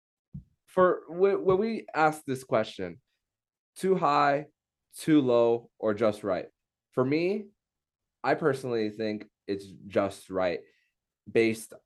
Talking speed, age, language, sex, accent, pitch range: 110 wpm, 20-39, English, male, American, 100-125 Hz